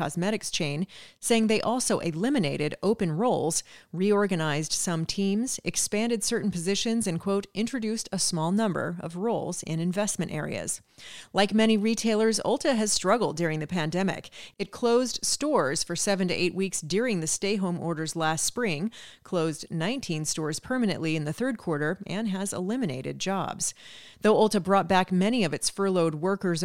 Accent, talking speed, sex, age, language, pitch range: American, 155 wpm, female, 30-49, English, 170-220 Hz